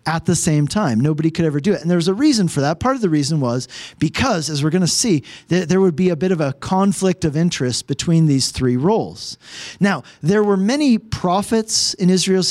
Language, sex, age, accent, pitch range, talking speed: English, male, 40-59, American, 155-210 Hz, 230 wpm